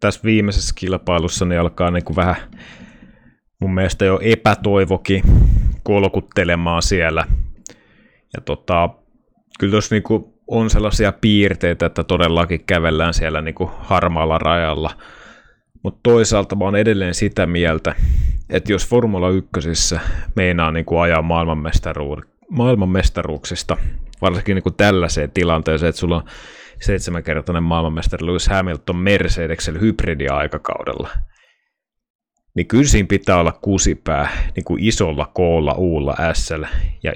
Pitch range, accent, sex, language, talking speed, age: 80-100 Hz, native, male, Finnish, 115 wpm, 30-49